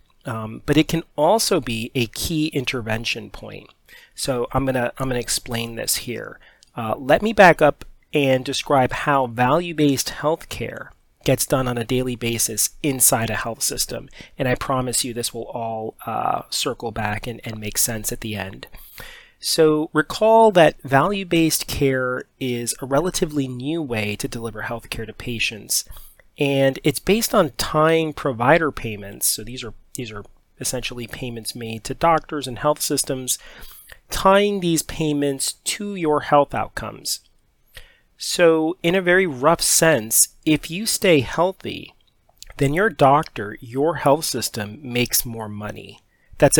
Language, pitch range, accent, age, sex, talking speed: English, 115-160 Hz, American, 30-49, male, 155 wpm